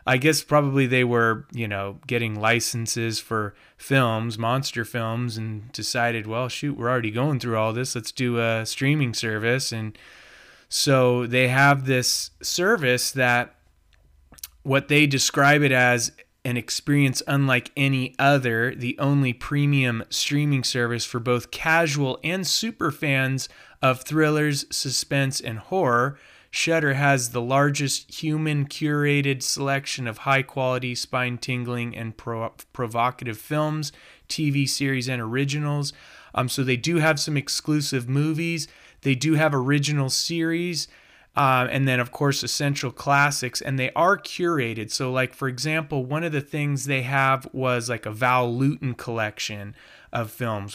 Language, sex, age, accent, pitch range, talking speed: English, male, 20-39, American, 120-145 Hz, 140 wpm